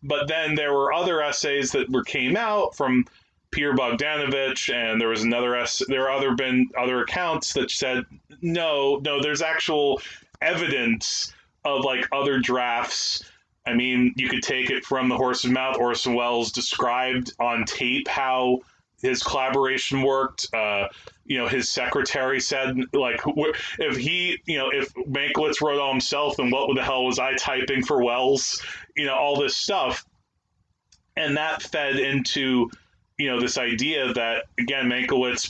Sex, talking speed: male, 160 wpm